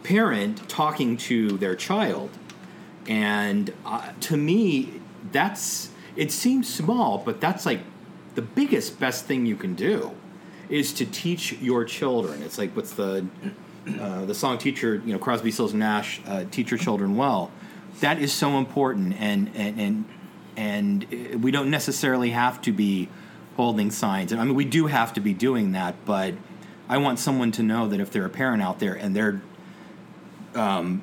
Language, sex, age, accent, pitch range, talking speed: English, male, 30-49, American, 115-185 Hz, 170 wpm